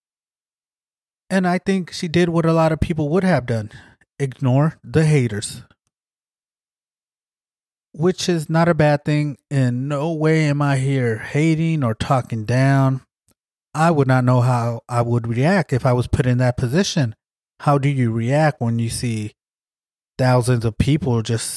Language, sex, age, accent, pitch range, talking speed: English, male, 30-49, American, 120-160 Hz, 160 wpm